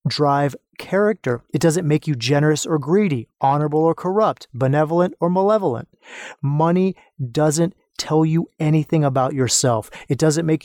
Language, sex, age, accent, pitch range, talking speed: English, male, 30-49, American, 135-175 Hz, 140 wpm